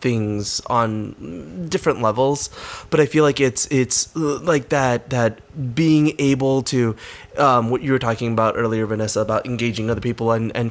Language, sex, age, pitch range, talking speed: English, male, 20-39, 110-130 Hz, 170 wpm